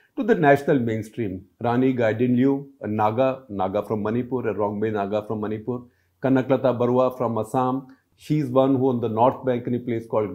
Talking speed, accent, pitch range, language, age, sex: 185 wpm, Indian, 120-150 Hz, English, 50-69, male